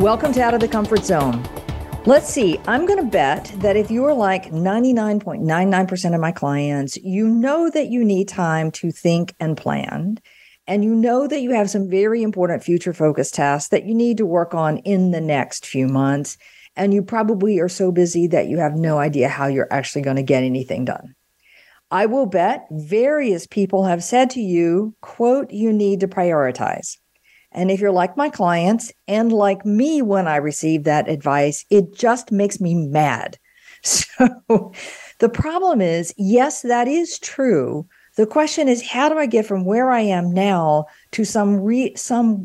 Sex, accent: female, American